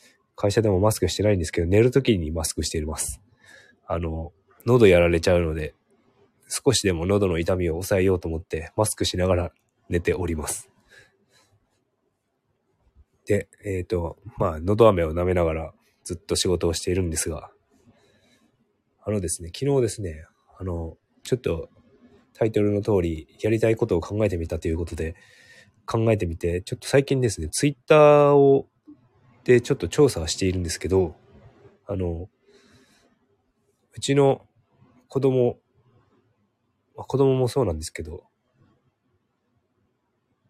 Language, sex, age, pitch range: Japanese, male, 20-39, 85-115 Hz